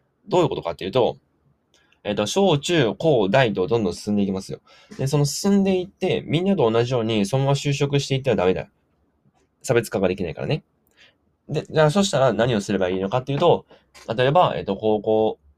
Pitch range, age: 95-155 Hz, 20-39